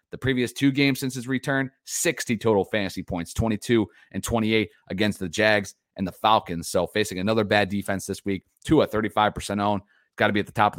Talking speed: 210 wpm